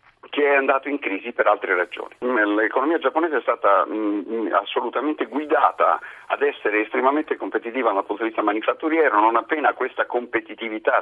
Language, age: Italian, 50-69